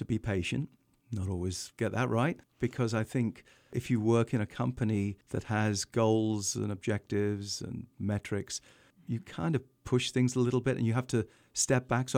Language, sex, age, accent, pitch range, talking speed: English, male, 50-69, British, 105-125 Hz, 185 wpm